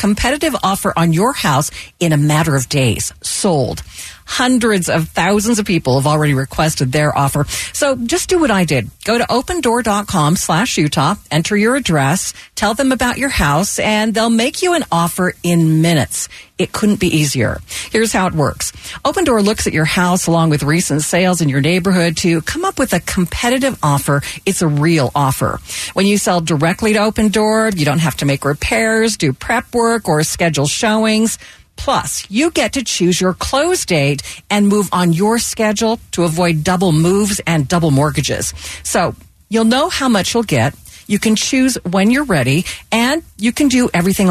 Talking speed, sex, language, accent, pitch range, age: 185 wpm, female, English, American, 160-225 Hz, 50-69